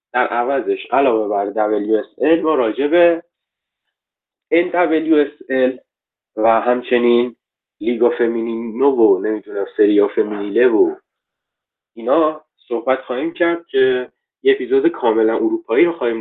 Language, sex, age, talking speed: Persian, male, 30-49, 105 wpm